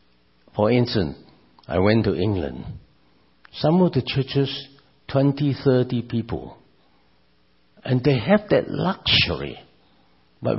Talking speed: 110 wpm